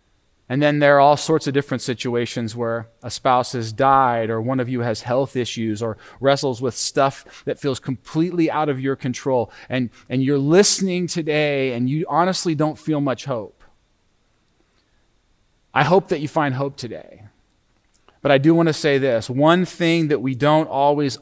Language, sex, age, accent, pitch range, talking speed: English, male, 30-49, American, 125-160 Hz, 180 wpm